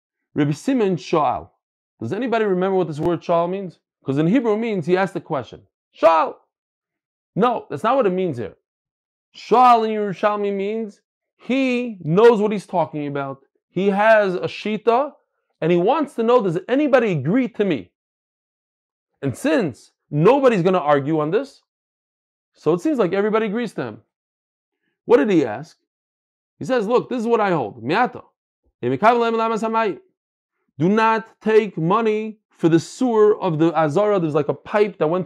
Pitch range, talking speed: 165-225 Hz, 160 wpm